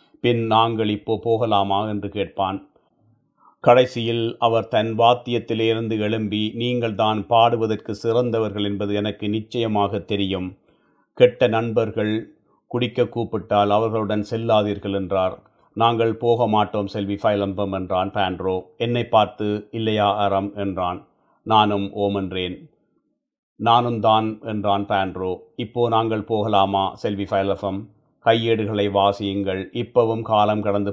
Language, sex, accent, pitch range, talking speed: Tamil, male, native, 100-115 Hz, 105 wpm